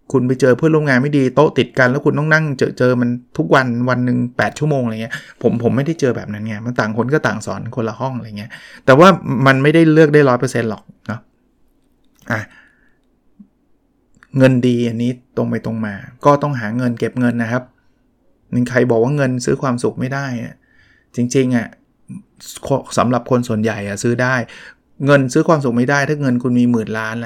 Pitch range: 120-150 Hz